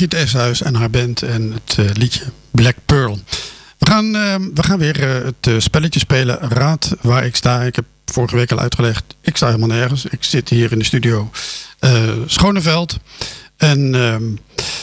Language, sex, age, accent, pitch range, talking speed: Dutch, male, 50-69, Dutch, 115-145 Hz, 185 wpm